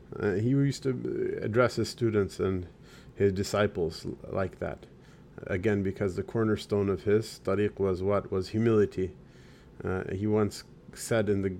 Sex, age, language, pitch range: male, 30-49, English, 95-110 Hz